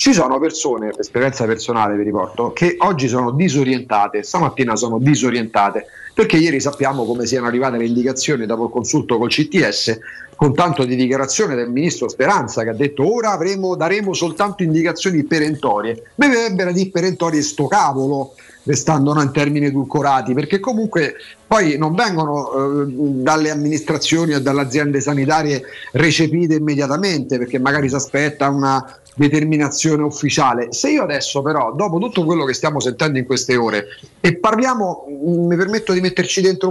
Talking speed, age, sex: 155 wpm, 40-59, male